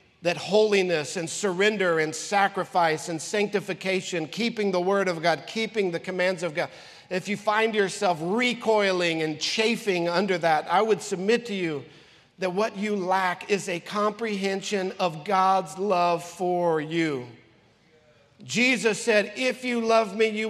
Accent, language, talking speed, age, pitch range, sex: American, English, 150 wpm, 50-69, 190-255 Hz, male